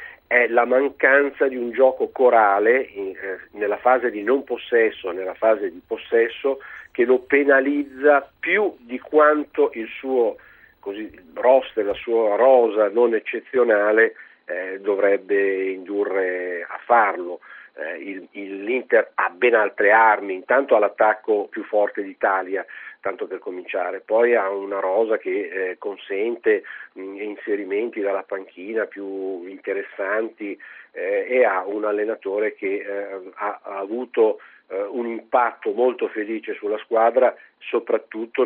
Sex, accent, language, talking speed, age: male, native, Italian, 135 wpm, 50-69